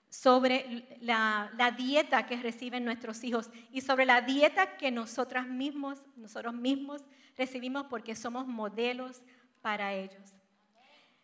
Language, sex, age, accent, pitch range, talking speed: English, female, 40-59, American, 220-270 Hz, 125 wpm